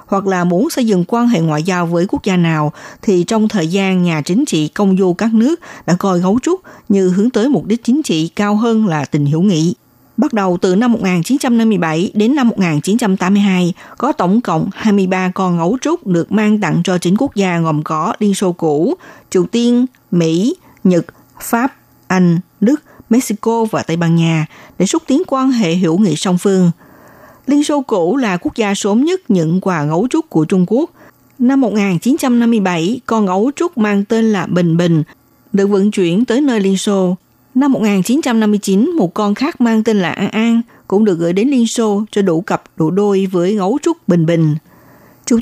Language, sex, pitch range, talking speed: Vietnamese, female, 180-235 Hz, 195 wpm